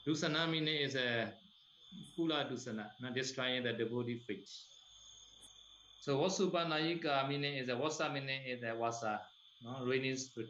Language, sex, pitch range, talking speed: Vietnamese, male, 110-140 Hz, 135 wpm